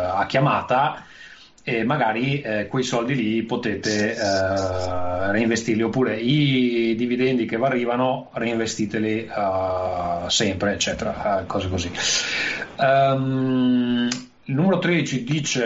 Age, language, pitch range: 30-49, Italian, 110-130 Hz